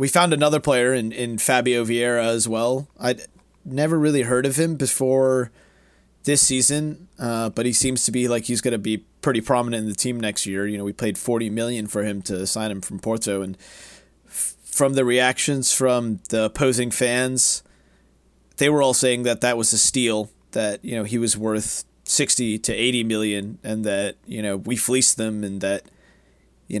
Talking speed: 195 wpm